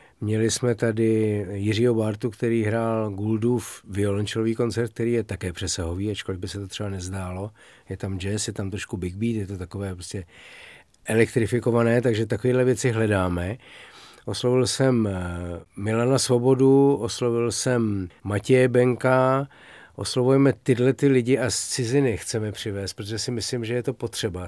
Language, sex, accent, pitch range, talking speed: Czech, male, native, 105-120 Hz, 150 wpm